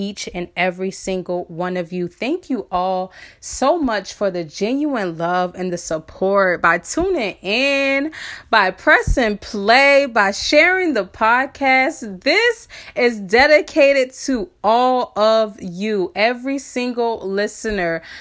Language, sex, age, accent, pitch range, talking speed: English, female, 30-49, American, 180-235 Hz, 130 wpm